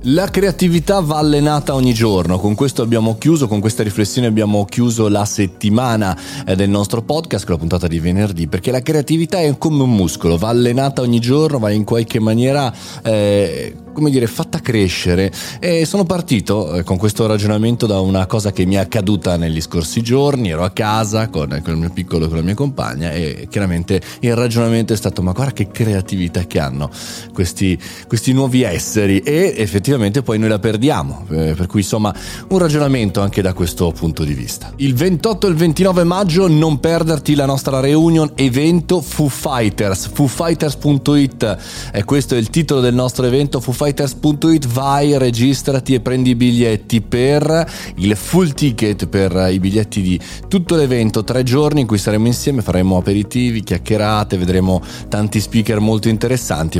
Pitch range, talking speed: 95-140 Hz, 170 wpm